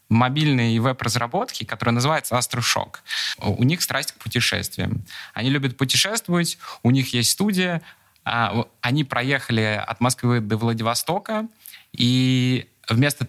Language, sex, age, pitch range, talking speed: Russian, male, 20-39, 105-125 Hz, 115 wpm